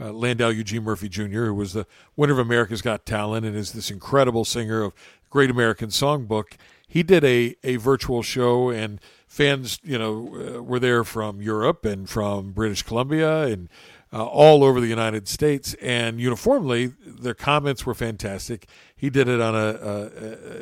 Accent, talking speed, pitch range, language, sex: American, 175 wpm, 110-130 Hz, English, male